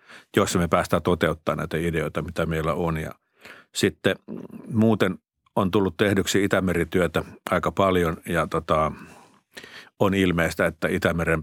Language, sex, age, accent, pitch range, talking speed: Finnish, male, 50-69, native, 80-95 Hz, 115 wpm